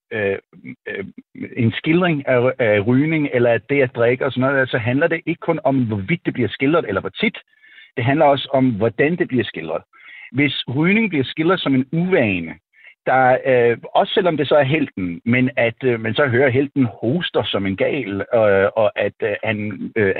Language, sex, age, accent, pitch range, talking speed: Danish, male, 60-79, native, 115-150 Hz, 200 wpm